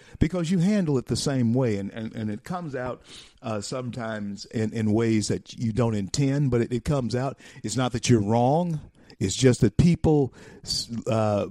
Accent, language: American, English